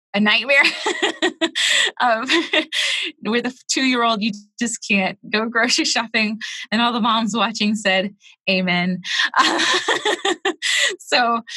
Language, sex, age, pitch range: English, female, 20-39, 175-215 Hz